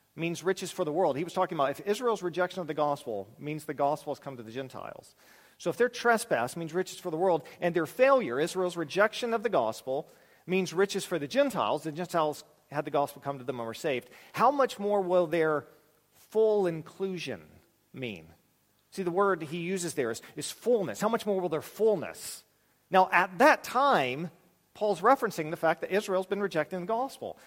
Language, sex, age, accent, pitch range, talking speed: English, male, 40-59, American, 150-215 Hz, 205 wpm